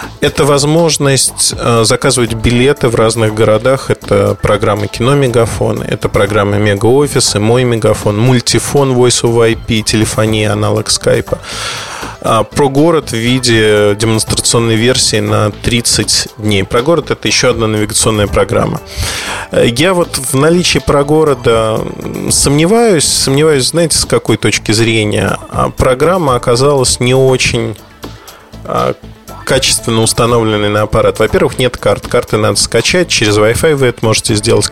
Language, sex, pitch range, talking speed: Russian, male, 110-135 Hz, 125 wpm